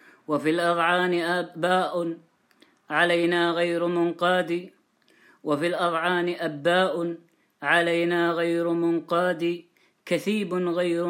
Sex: female